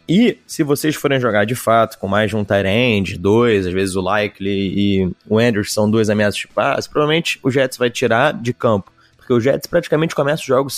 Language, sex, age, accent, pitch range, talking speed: Portuguese, male, 20-39, Brazilian, 105-145 Hz, 225 wpm